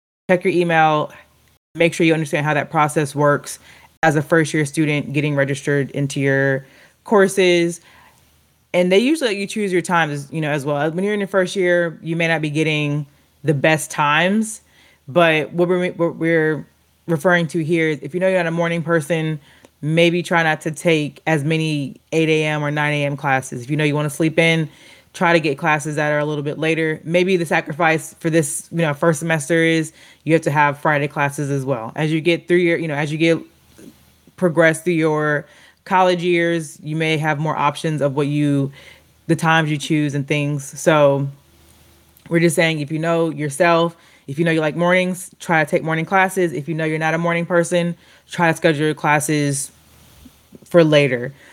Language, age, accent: English, 20-39, American